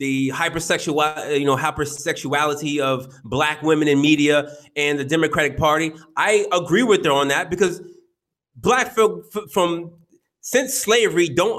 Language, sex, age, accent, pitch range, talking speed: English, male, 30-49, American, 165-240 Hz, 140 wpm